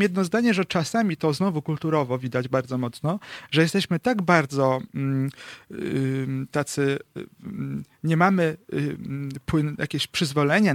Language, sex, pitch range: Polish, male, 135-185 Hz